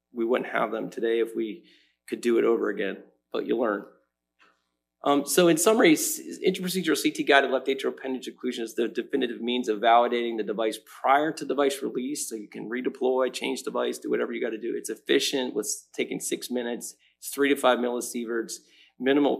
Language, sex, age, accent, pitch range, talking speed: English, male, 30-49, American, 110-145 Hz, 190 wpm